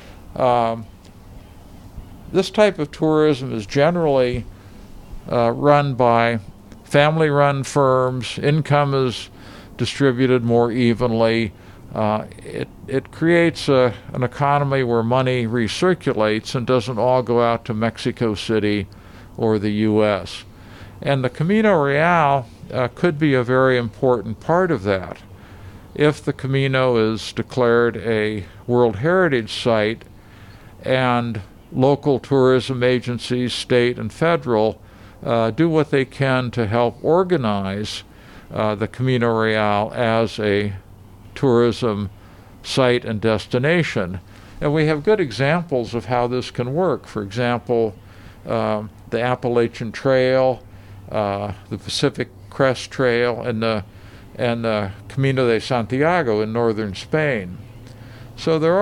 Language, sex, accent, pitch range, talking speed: English, male, American, 105-135 Hz, 120 wpm